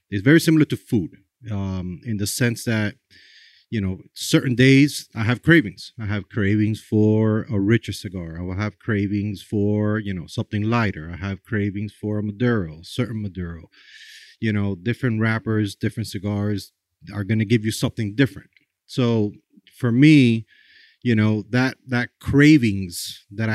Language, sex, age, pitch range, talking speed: English, male, 30-49, 105-125 Hz, 160 wpm